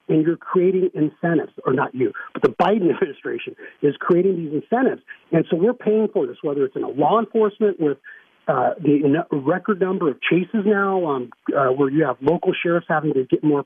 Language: English